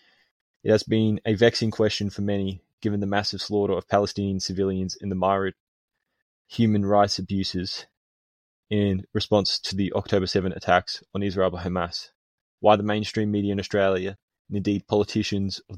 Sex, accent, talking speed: male, Australian, 160 wpm